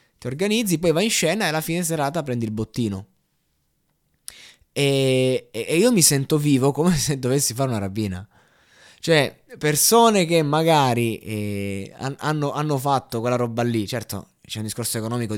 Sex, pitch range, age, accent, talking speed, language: male, 115-155 Hz, 20-39, native, 165 wpm, Italian